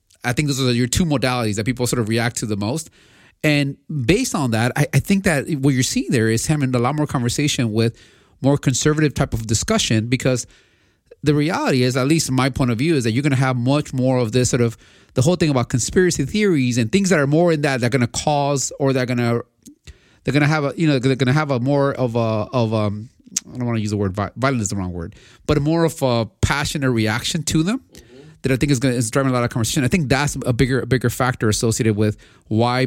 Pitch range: 110-145 Hz